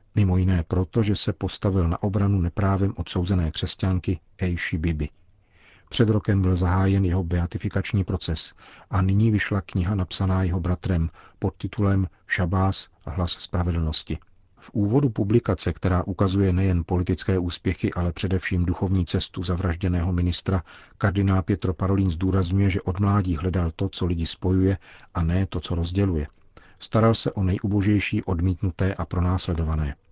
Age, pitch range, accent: 50-69, 90-100 Hz, native